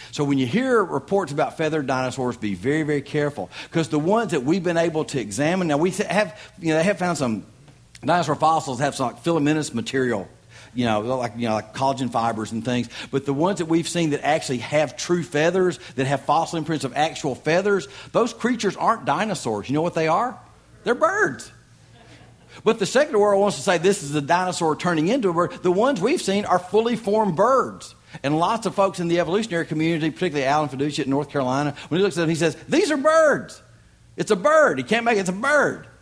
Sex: male